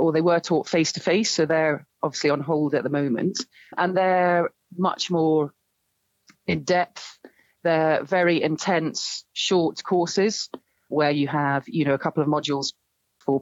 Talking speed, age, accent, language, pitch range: 140 wpm, 40-59, British, English, 150-180 Hz